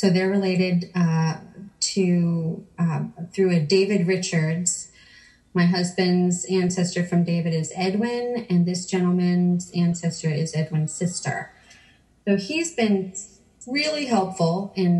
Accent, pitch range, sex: American, 165-185 Hz, female